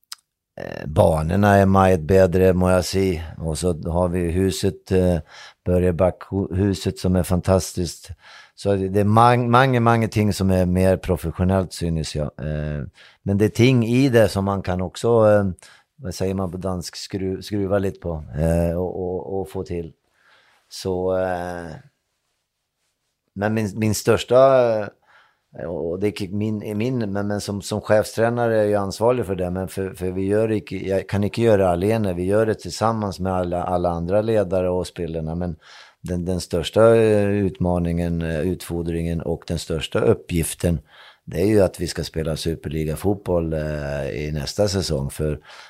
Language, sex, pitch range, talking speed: Danish, male, 85-105 Hz, 160 wpm